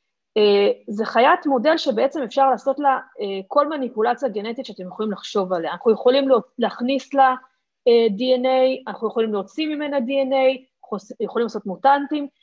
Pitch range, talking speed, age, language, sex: 200-270 Hz, 150 wpm, 30-49, Hebrew, female